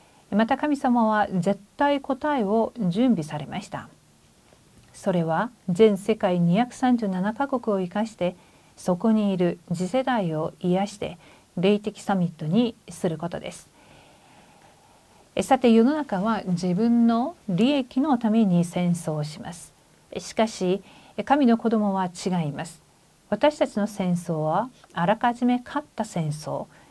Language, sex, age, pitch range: Korean, female, 50-69, 175-225 Hz